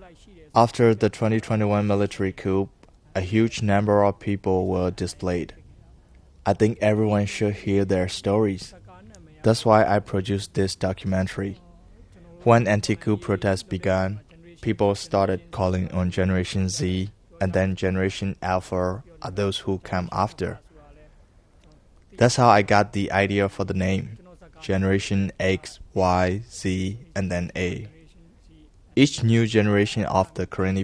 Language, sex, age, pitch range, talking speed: English, male, 20-39, 95-105 Hz, 130 wpm